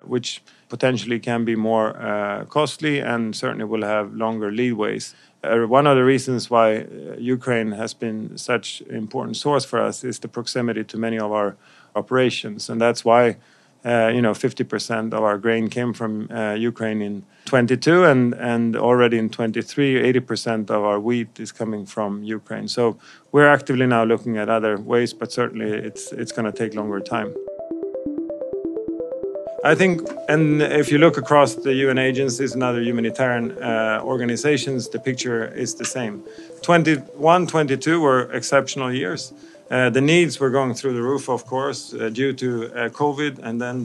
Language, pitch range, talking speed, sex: Filipino, 115-140 Hz, 170 wpm, male